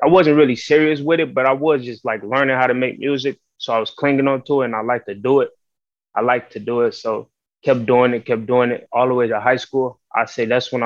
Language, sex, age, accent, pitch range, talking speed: English, male, 20-39, American, 115-130 Hz, 280 wpm